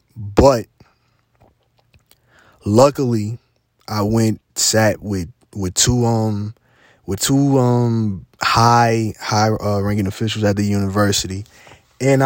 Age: 20-39